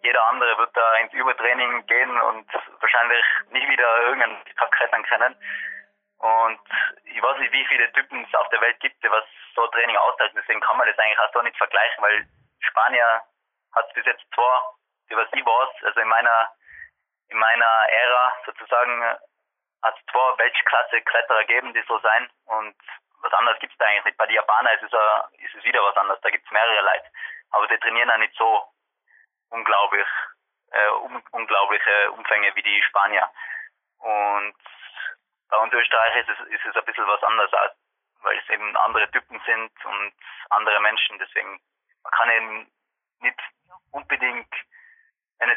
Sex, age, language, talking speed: male, 20-39, German, 175 wpm